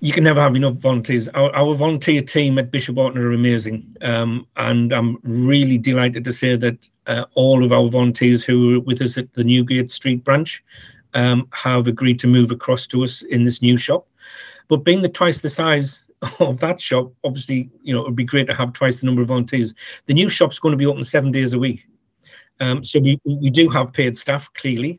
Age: 40-59